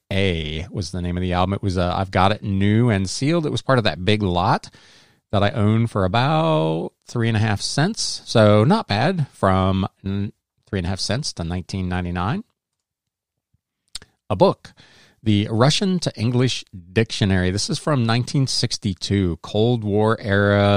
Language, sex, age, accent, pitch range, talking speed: English, male, 40-59, American, 95-130 Hz, 160 wpm